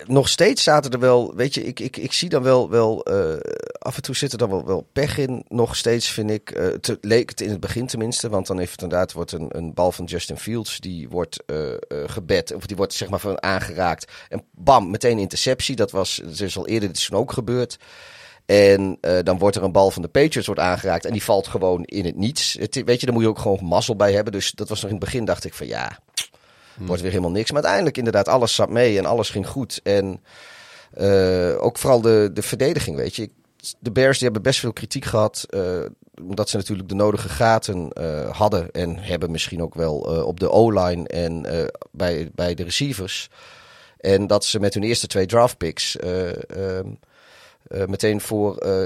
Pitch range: 90-120 Hz